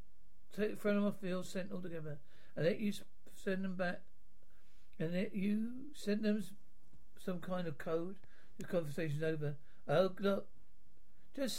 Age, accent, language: 60-79, British, English